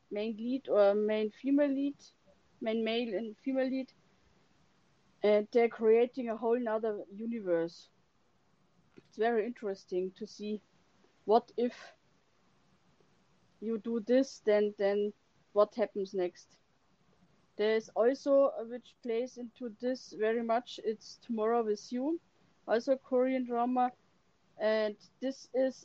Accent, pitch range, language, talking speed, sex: German, 210-245 Hz, English, 125 wpm, female